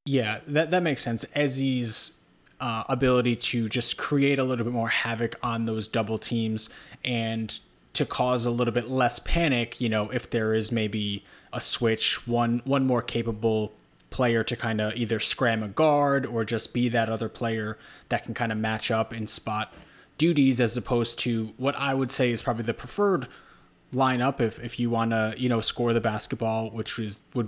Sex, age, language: male, 20-39, English